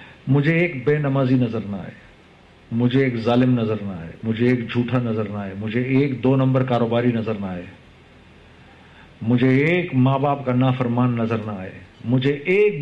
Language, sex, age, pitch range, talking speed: Urdu, male, 50-69, 115-150 Hz, 185 wpm